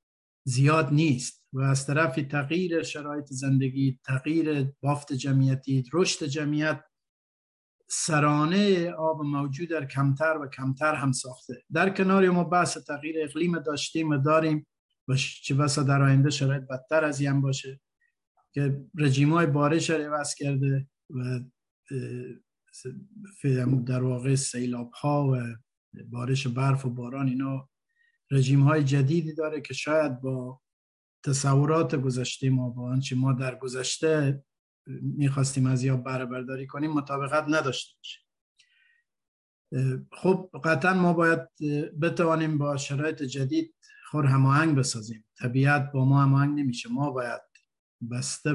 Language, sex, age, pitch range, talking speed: Persian, male, 50-69, 130-155 Hz, 115 wpm